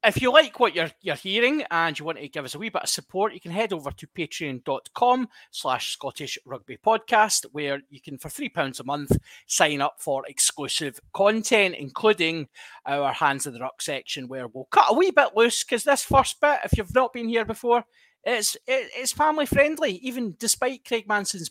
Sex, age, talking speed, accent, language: male, 30-49, 195 wpm, British, English